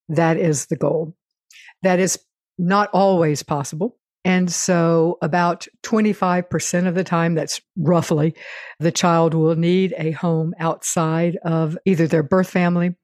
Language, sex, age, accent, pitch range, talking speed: English, female, 60-79, American, 155-180 Hz, 140 wpm